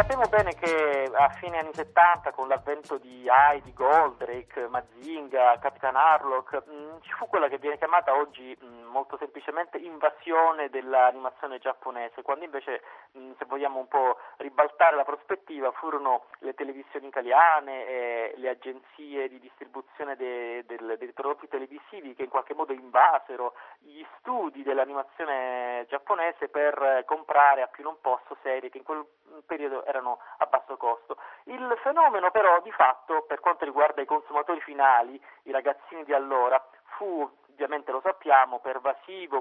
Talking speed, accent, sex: 150 wpm, native, male